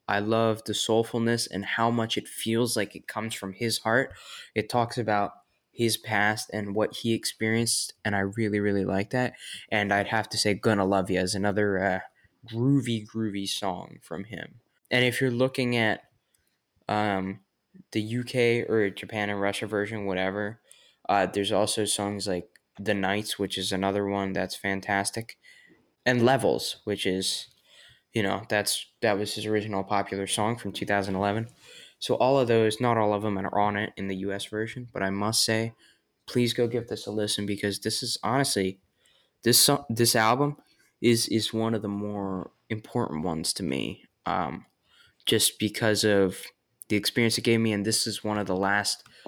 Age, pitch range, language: 10-29, 100-115 Hz, English